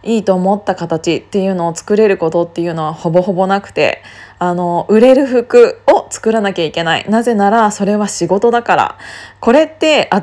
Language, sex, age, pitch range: Japanese, female, 20-39, 180-245 Hz